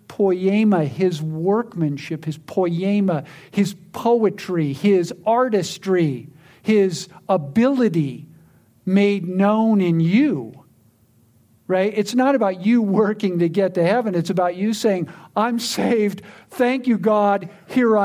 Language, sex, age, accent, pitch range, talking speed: English, male, 50-69, American, 170-240 Hz, 115 wpm